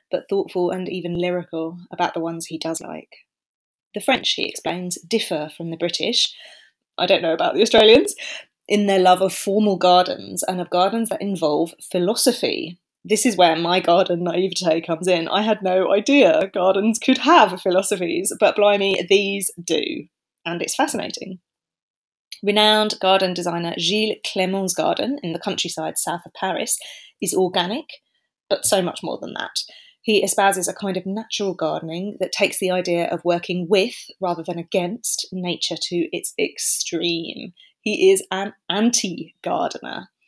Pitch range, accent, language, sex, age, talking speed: 175-220 Hz, British, English, female, 20-39, 155 wpm